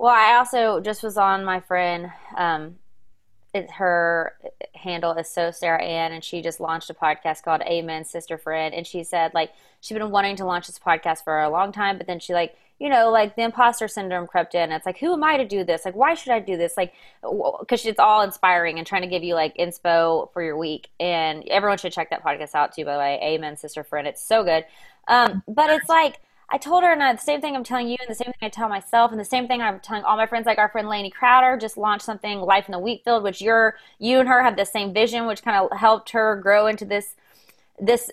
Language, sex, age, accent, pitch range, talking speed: English, female, 20-39, American, 175-240 Hz, 250 wpm